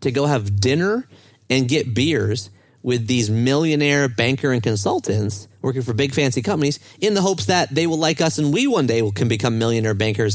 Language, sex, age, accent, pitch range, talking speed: English, male, 30-49, American, 105-150 Hz, 195 wpm